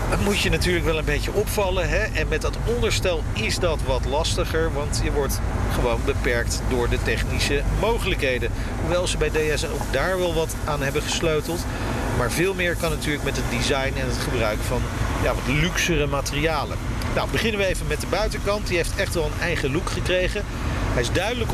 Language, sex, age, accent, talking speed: Dutch, male, 40-59, Dutch, 200 wpm